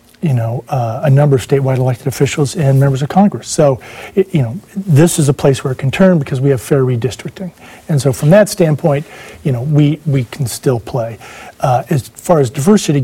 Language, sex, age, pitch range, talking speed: English, male, 40-59, 130-155 Hz, 215 wpm